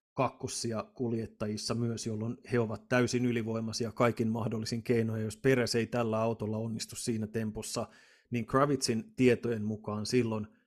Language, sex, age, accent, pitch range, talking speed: Finnish, male, 30-49, native, 110-130 Hz, 135 wpm